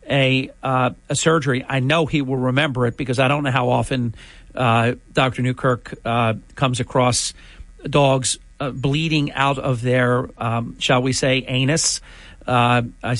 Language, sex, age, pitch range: English, male, 50-69, 125-150 Hz